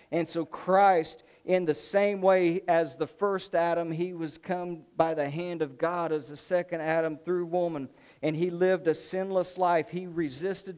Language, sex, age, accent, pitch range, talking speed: English, male, 50-69, American, 155-185 Hz, 185 wpm